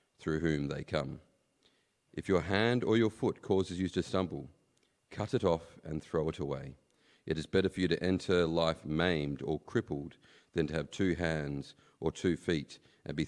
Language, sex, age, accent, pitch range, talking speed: English, male, 40-59, Australian, 80-95 Hz, 190 wpm